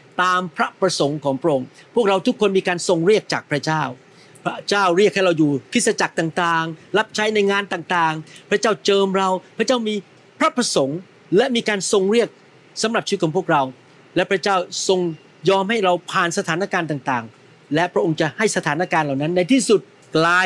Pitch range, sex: 165-210 Hz, male